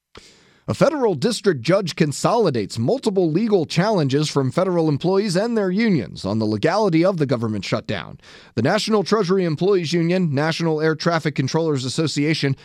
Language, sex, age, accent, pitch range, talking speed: English, male, 30-49, American, 145-180 Hz, 145 wpm